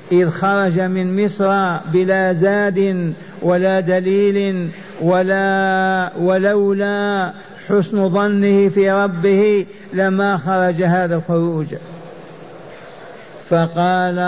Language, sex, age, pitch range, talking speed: Arabic, male, 50-69, 170-195 Hz, 80 wpm